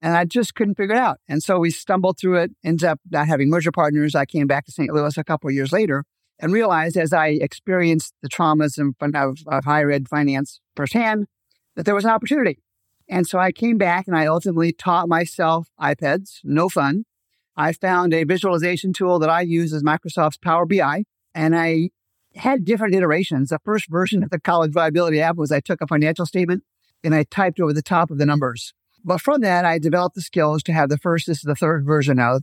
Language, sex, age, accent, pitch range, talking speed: English, male, 50-69, American, 150-180 Hz, 220 wpm